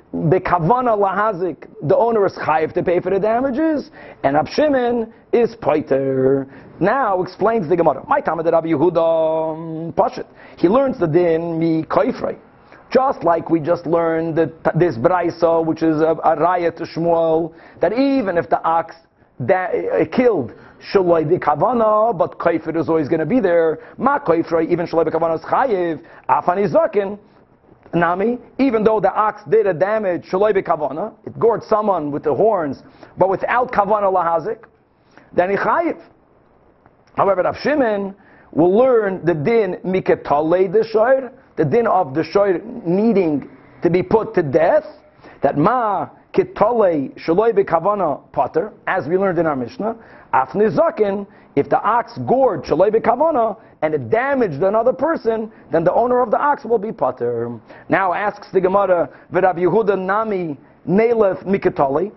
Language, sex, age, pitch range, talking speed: English, male, 40-59, 165-220 Hz, 140 wpm